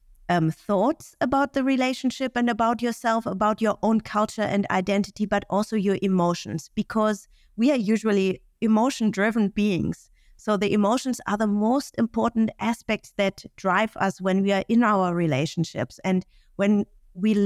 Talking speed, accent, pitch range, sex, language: 155 wpm, German, 195-245 Hz, female, English